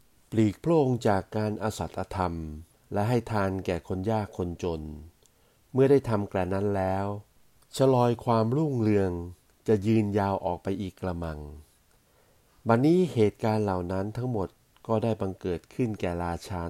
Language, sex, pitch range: Thai, male, 90-110 Hz